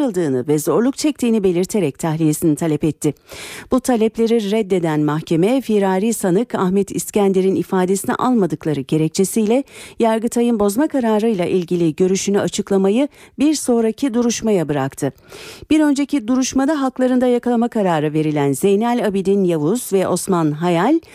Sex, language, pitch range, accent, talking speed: female, Turkish, 175-245 Hz, native, 115 wpm